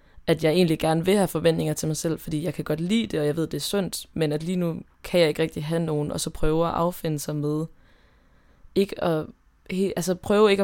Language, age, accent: Danish, 20-39, native